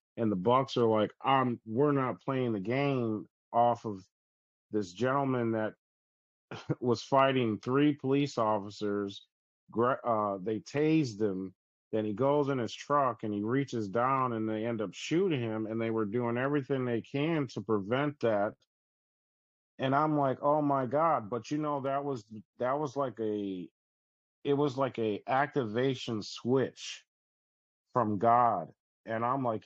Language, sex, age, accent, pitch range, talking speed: English, male, 40-59, American, 110-130 Hz, 155 wpm